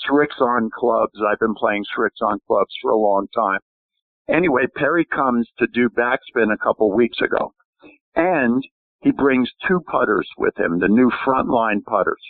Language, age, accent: English, 50-69, American